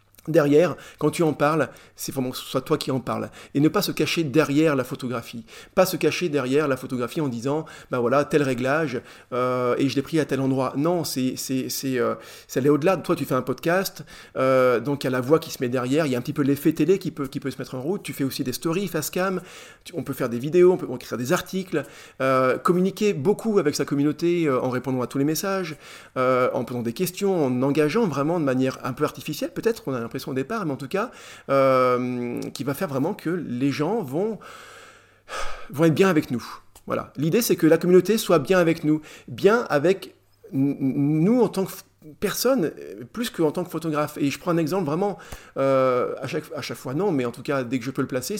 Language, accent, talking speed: French, French, 245 wpm